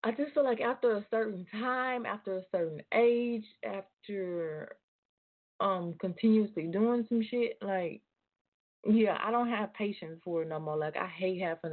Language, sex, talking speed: English, female, 165 wpm